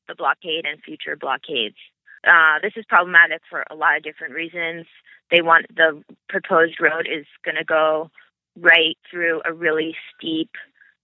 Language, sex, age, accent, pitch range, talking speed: English, female, 20-39, American, 155-185 Hz, 160 wpm